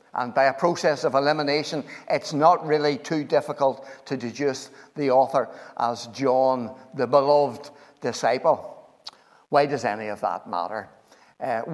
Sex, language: male, English